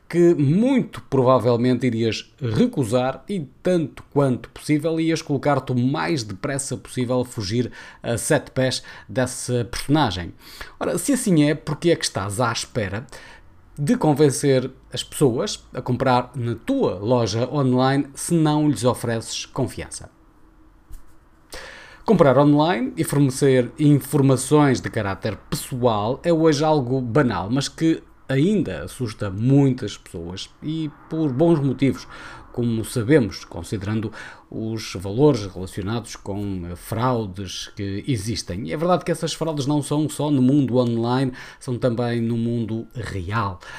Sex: male